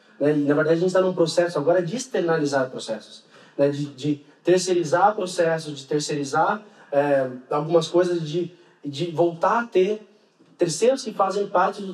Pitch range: 150-185 Hz